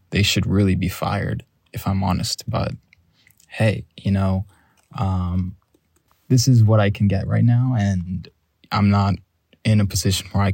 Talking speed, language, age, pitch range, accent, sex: 165 wpm, English, 20-39, 95-115 Hz, American, male